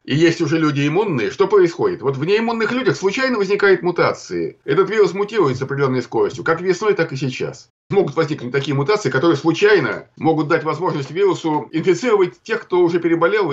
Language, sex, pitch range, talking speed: Russian, male, 145-205 Hz, 175 wpm